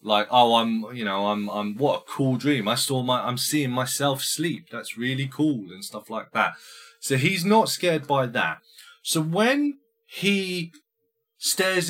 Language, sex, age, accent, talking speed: English, male, 30-49, British, 175 wpm